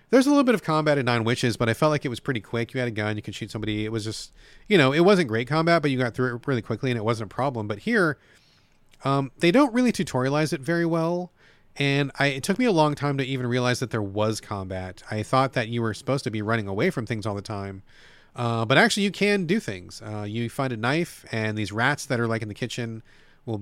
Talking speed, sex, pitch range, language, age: 270 wpm, male, 115-150 Hz, English, 30-49